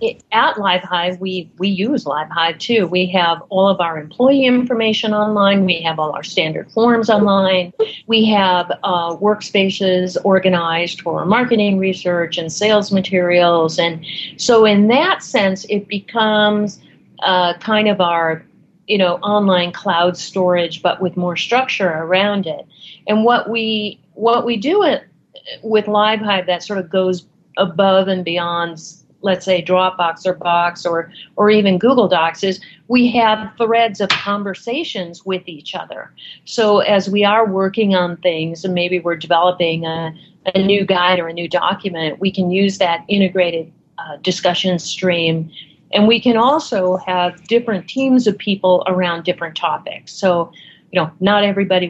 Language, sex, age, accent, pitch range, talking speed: English, female, 40-59, American, 170-205 Hz, 155 wpm